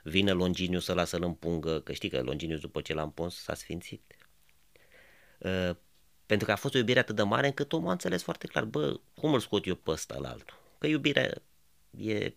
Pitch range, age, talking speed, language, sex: 85-120 Hz, 30-49, 215 wpm, Romanian, male